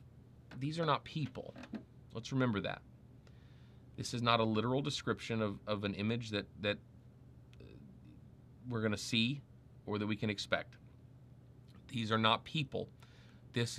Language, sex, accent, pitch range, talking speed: English, male, American, 105-130 Hz, 145 wpm